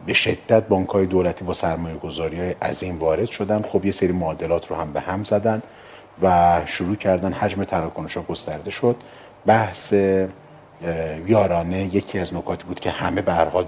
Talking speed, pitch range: 160 wpm, 85-105 Hz